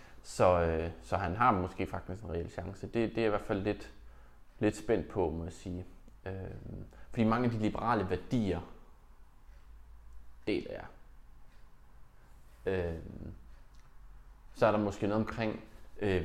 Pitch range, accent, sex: 90-110 Hz, native, male